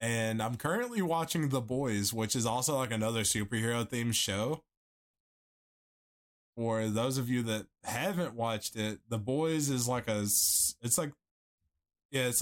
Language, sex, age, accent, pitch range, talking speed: English, male, 20-39, American, 110-130 Hz, 150 wpm